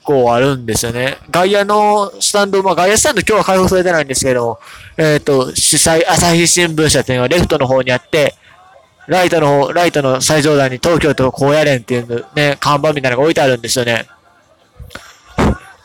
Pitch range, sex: 140-210 Hz, male